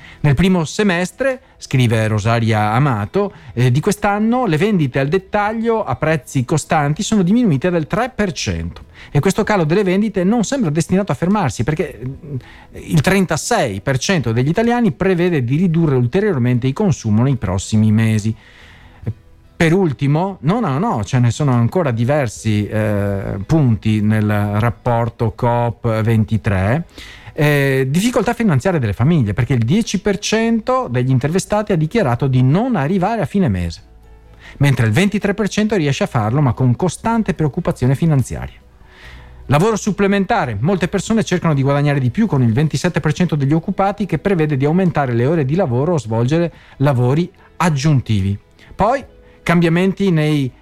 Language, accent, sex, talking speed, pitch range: Italian, native, male, 140 wpm, 120-190 Hz